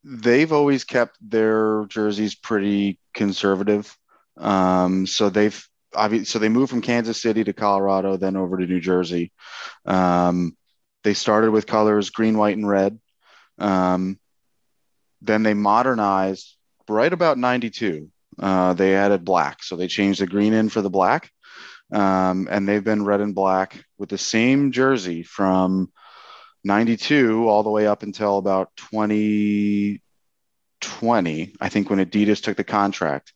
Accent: American